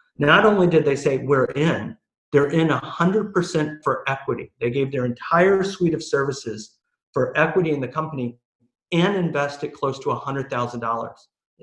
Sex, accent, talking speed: male, American, 150 wpm